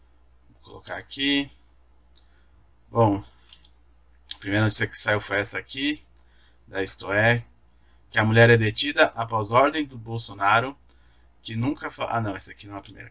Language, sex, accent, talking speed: Portuguese, male, Brazilian, 150 wpm